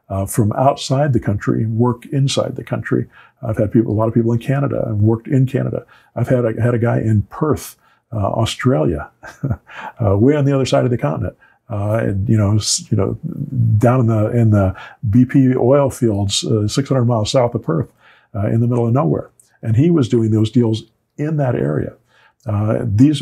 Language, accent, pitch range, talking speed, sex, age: English, American, 110-130 Hz, 205 wpm, male, 50-69